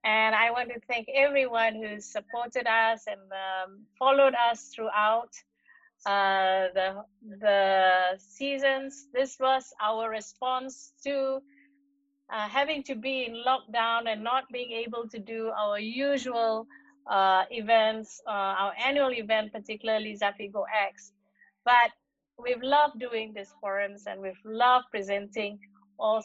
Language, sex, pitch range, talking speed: English, female, 205-270 Hz, 130 wpm